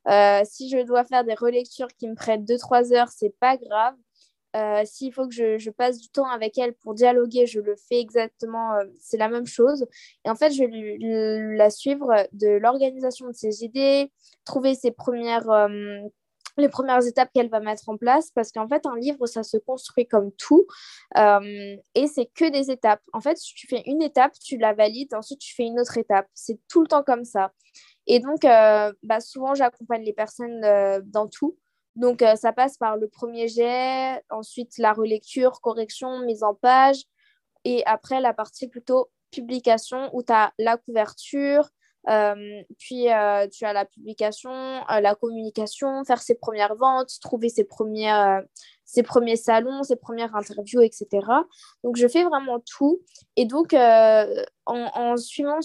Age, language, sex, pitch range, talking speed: 20-39, French, female, 215-265 Hz, 190 wpm